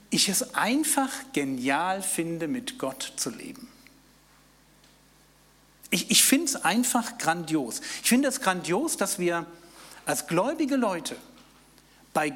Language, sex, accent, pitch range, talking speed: German, male, German, 160-250 Hz, 115 wpm